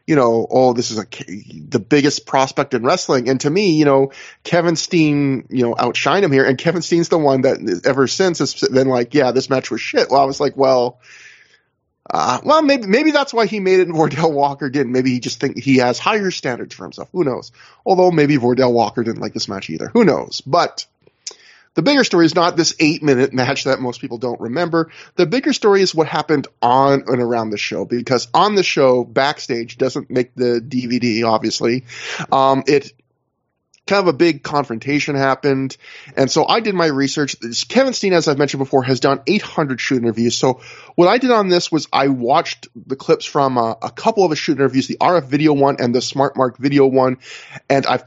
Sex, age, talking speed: male, 20-39, 215 wpm